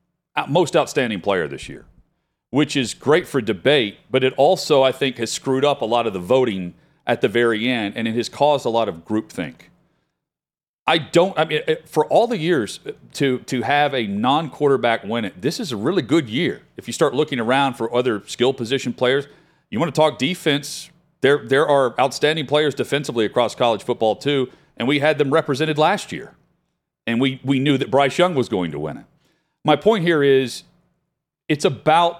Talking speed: 200 wpm